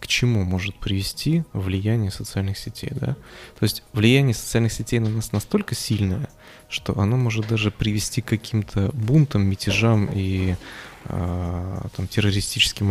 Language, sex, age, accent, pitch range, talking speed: Russian, male, 20-39, native, 100-120 Hz, 130 wpm